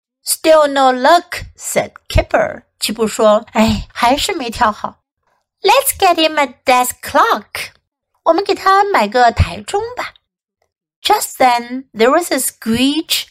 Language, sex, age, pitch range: Chinese, female, 60-79, 215-345 Hz